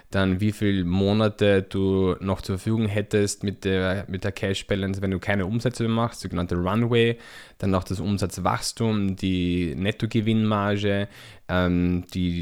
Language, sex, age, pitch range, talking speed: German, male, 20-39, 95-110 Hz, 145 wpm